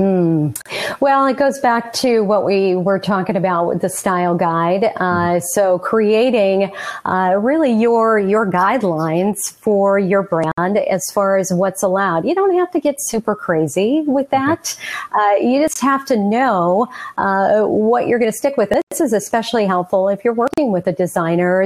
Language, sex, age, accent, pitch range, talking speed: English, female, 40-59, American, 185-230 Hz, 175 wpm